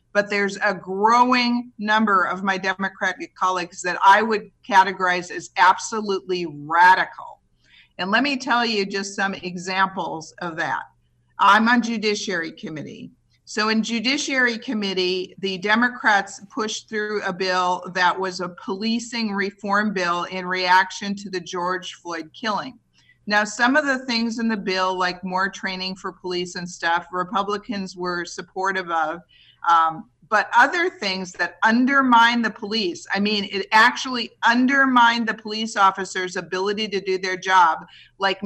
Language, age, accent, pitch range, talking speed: English, 50-69, American, 185-230 Hz, 145 wpm